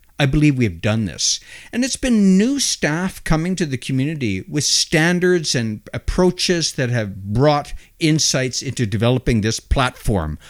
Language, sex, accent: English, male, American